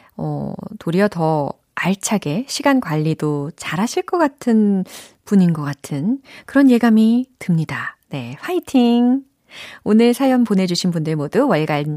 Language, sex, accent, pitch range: Korean, female, native, 165-265 Hz